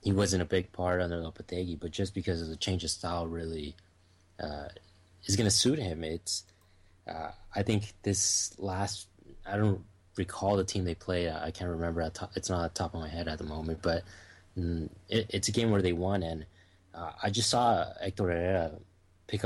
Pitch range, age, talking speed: 85-100 Hz, 20-39, 205 wpm